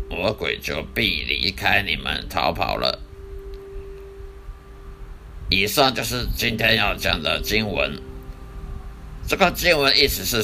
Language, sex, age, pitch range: Chinese, male, 60-79, 80-115 Hz